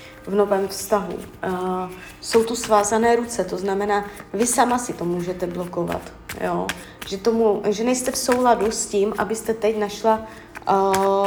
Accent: native